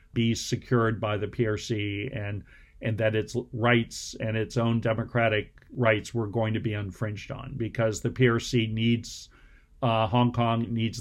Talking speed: 160 wpm